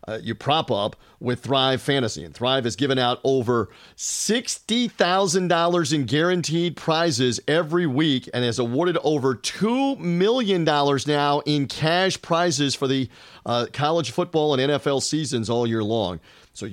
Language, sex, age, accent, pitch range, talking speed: English, male, 40-59, American, 135-175 Hz, 145 wpm